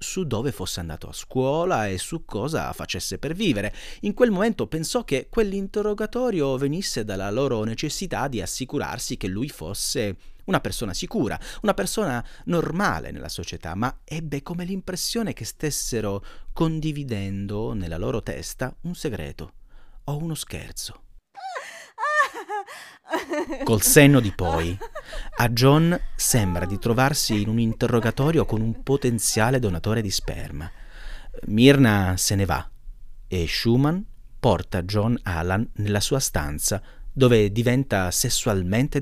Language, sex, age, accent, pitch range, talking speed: Italian, male, 30-49, native, 100-140 Hz, 130 wpm